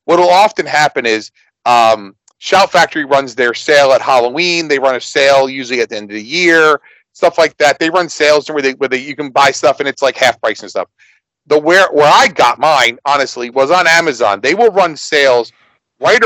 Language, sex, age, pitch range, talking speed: English, male, 40-59, 135-170 Hz, 220 wpm